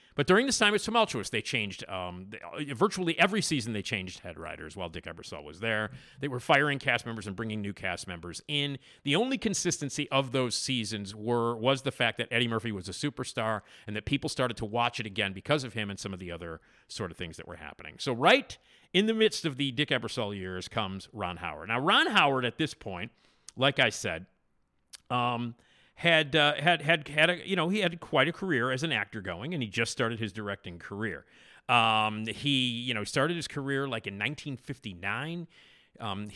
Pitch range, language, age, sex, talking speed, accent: 105-140 Hz, English, 40-59, male, 210 wpm, American